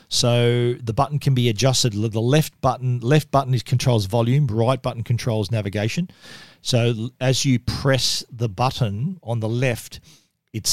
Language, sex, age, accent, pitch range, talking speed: English, male, 40-59, Australian, 115-145 Hz, 155 wpm